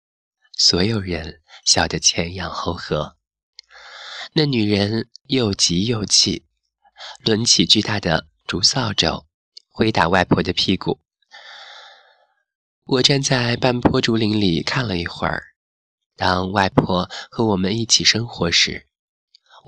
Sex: male